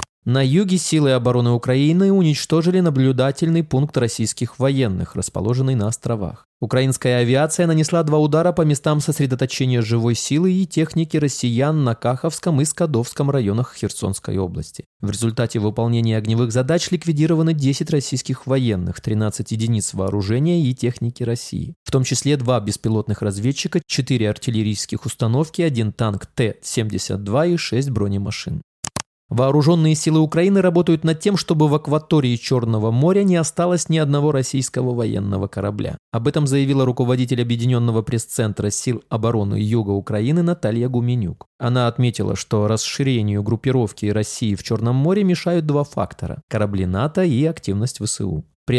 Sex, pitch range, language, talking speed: male, 110-155 Hz, Russian, 135 wpm